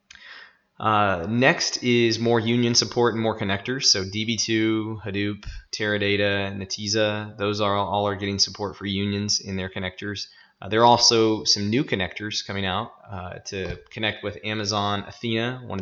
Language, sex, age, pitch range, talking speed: English, male, 20-39, 95-110 Hz, 160 wpm